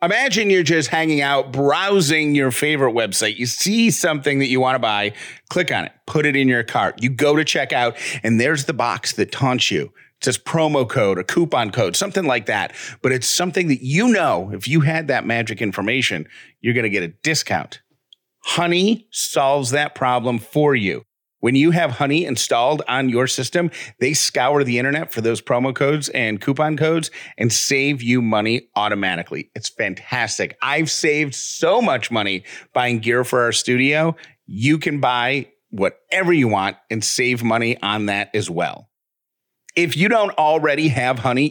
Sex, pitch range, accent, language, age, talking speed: male, 120-160 Hz, American, English, 40-59, 180 wpm